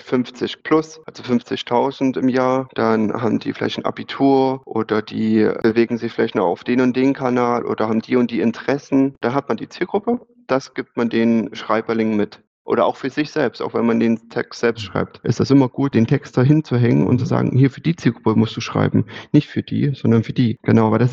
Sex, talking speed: male, 225 wpm